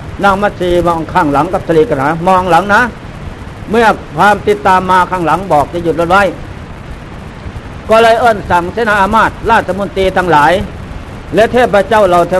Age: 60-79